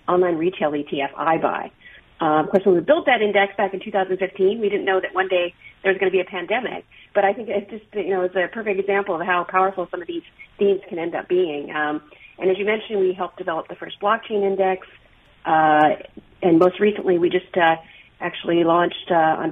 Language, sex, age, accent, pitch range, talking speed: English, female, 40-59, American, 170-200 Hz, 230 wpm